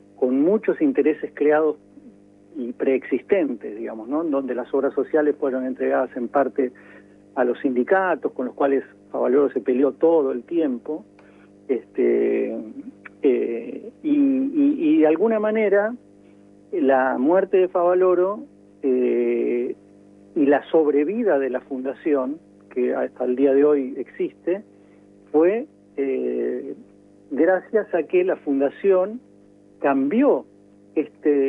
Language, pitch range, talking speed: Spanish, 115-170 Hz, 120 wpm